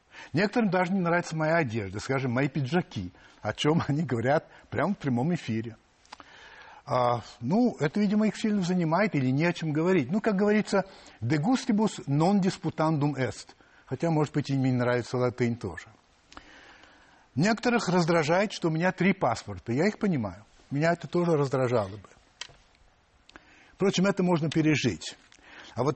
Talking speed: 155 wpm